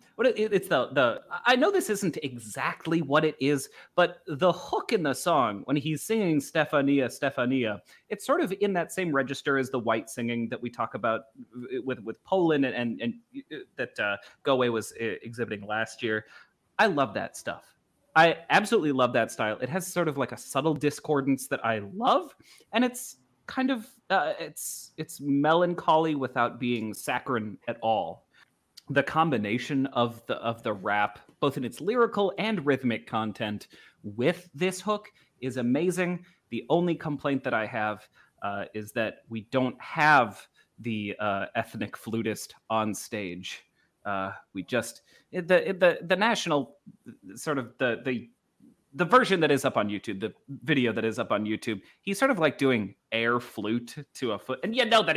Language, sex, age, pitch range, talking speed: English, male, 30-49, 115-175 Hz, 175 wpm